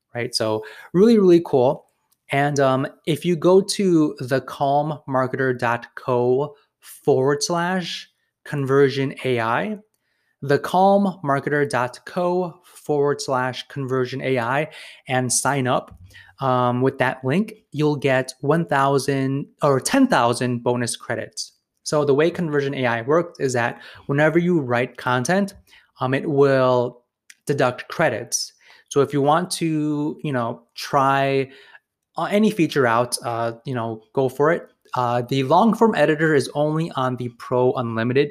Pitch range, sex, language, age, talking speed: 125-160 Hz, male, English, 20-39, 130 wpm